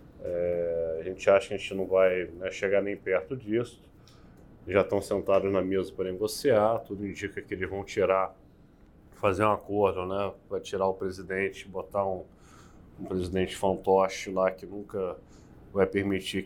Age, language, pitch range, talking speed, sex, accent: 20-39, Portuguese, 95-110 Hz, 165 wpm, male, Brazilian